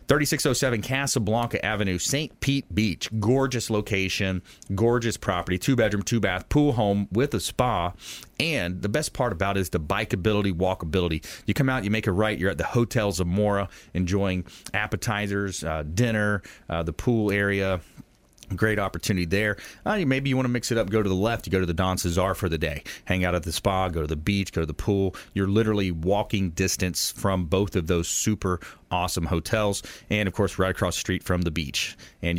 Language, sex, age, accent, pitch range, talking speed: English, male, 30-49, American, 90-115 Hz, 195 wpm